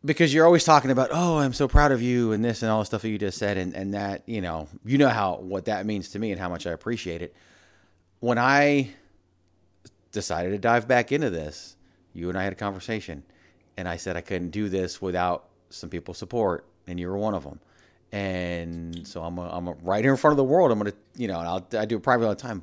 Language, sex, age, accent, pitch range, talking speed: English, male, 30-49, American, 90-115 Hz, 255 wpm